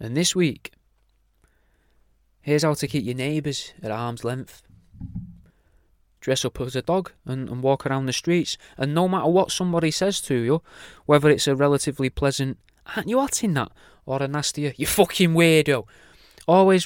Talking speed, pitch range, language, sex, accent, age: 170 wpm, 145-180 Hz, English, male, British, 20-39